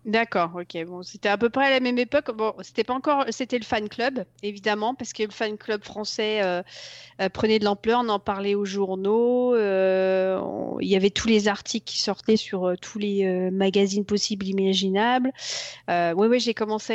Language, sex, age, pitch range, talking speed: French, female, 40-59, 200-240 Hz, 210 wpm